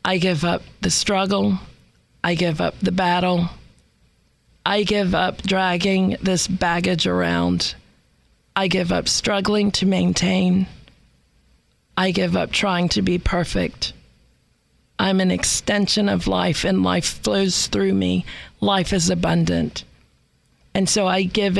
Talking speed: 130 wpm